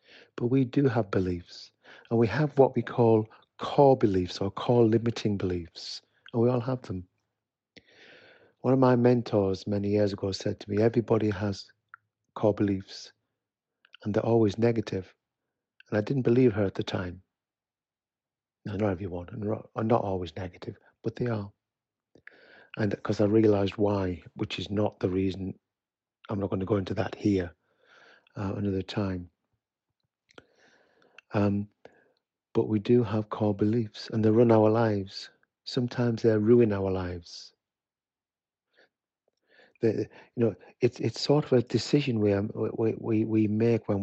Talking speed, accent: 150 wpm, British